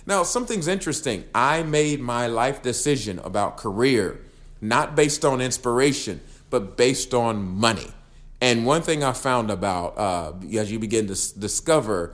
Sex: male